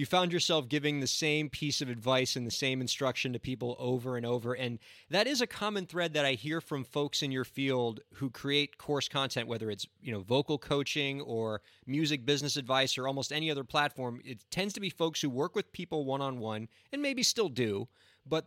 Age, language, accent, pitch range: 30-49, English, American, 115-150 Hz